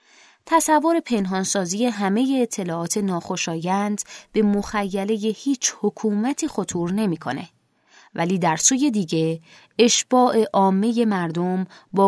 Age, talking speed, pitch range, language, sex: 20-39, 95 wpm, 175-225 Hz, Persian, female